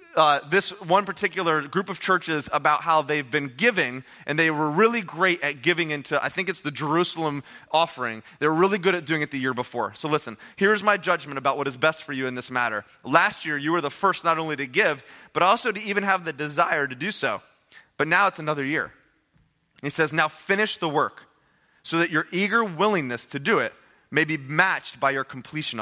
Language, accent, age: English, American, 20-39